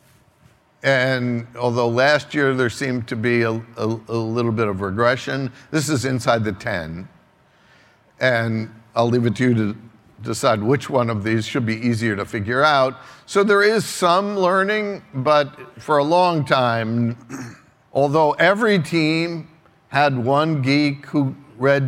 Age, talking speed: 60-79, 150 wpm